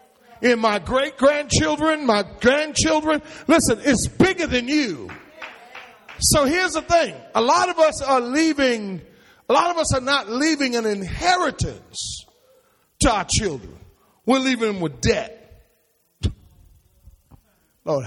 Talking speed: 125 wpm